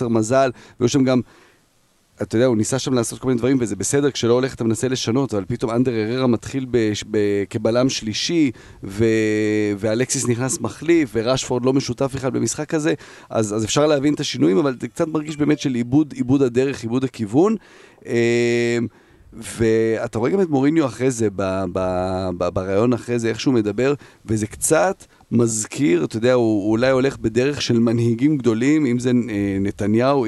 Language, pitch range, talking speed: Hebrew, 110-130 Hz, 165 wpm